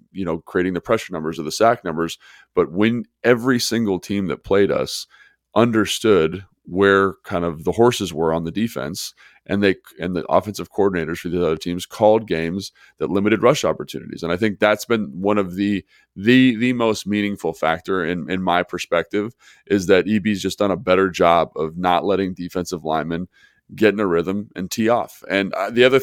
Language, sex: English, male